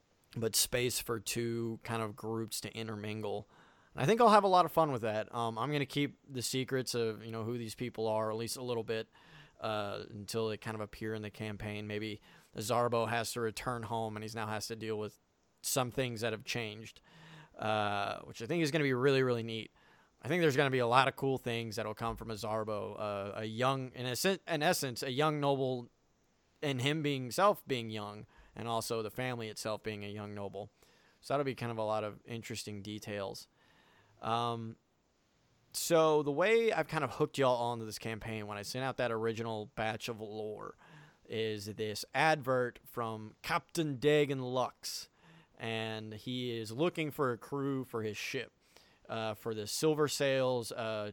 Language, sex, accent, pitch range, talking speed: English, male, American, 110-130 Hz, 200 wpm